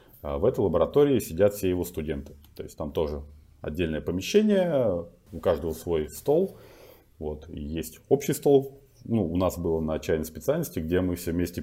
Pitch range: 80-100 Hz